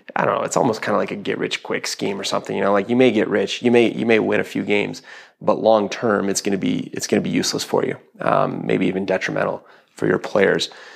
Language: English